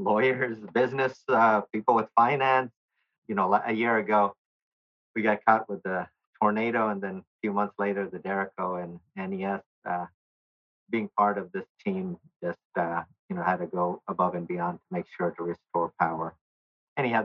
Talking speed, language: 175 wpm, English